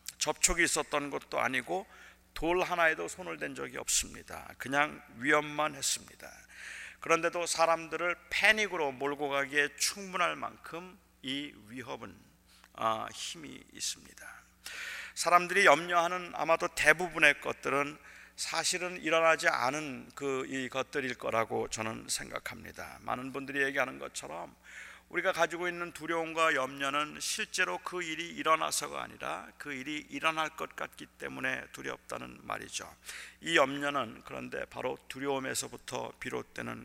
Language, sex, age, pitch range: Korean, male, 40-59, 135-170 Hz